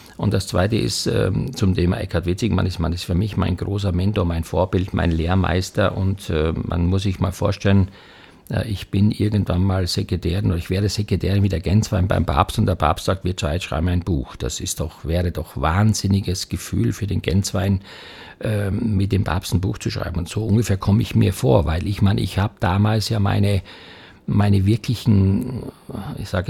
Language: German